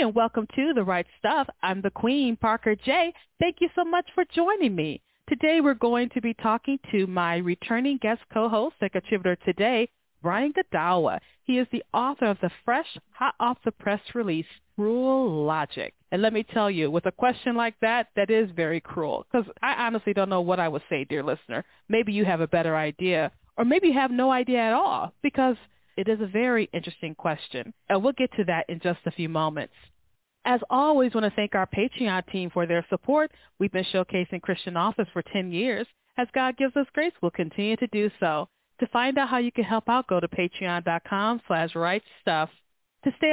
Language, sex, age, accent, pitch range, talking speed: English, female, 40-59, American, 180-260 Hz, 205 wpm